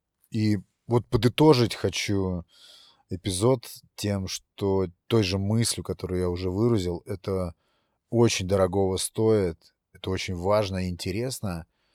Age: 30-49